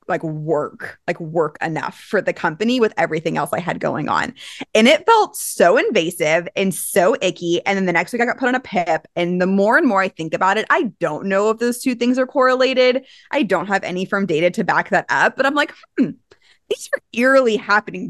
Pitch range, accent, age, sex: 175-235 Hz, American, 20-39, female